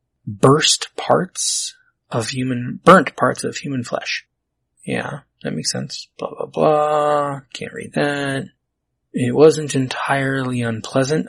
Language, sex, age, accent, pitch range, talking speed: English, male, 20-39, American, 115-140 Hz, 120 wpm